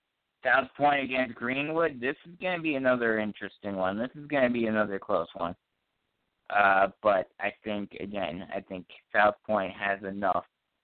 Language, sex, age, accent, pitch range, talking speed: English, male, 50-69, American, 105-145 Hz, 170 wpm